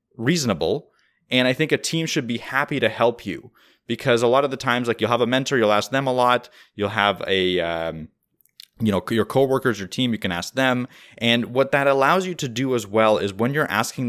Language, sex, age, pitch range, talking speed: English, male, 20-39, 100-125 Hz, 235 wpm